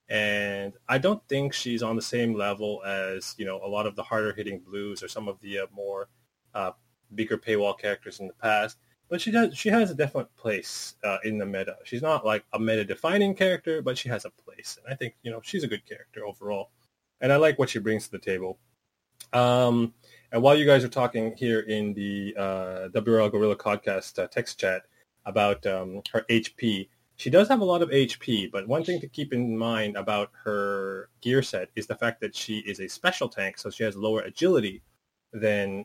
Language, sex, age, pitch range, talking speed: English, male, 20-39, 100-120 Hz, 215 wpm